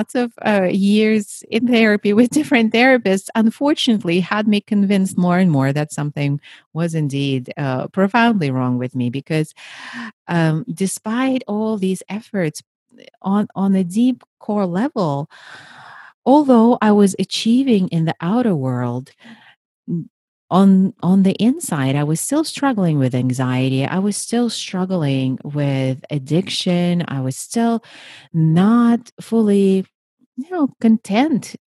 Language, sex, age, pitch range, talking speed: English, female, 40-59, 150-225 Hz, 135 wpm